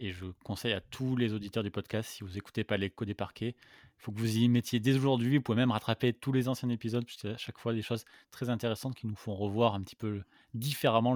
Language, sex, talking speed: French, male, 265 wpm